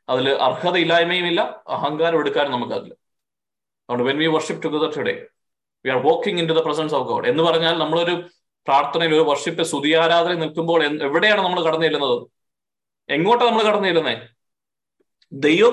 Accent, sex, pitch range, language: native, male, 145-170 Hz, Malayalam